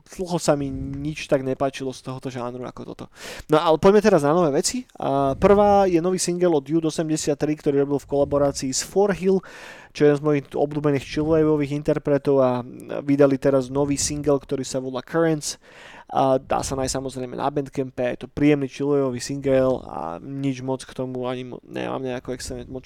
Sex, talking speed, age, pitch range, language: male, 185 wpm, 20-39, 135-160 Hz, Slovak